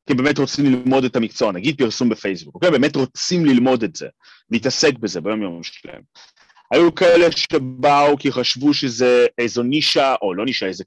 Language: Hebrew